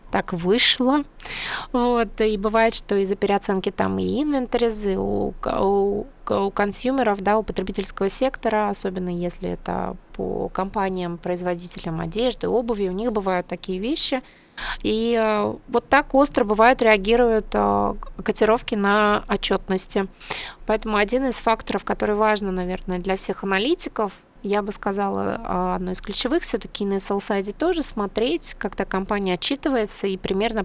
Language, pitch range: Russian, 185-235 Hz